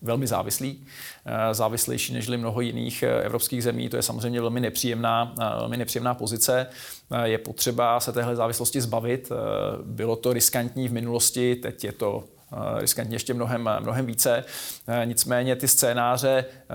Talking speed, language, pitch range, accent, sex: 135 wpm, Czech, 115-130 Hz, native, male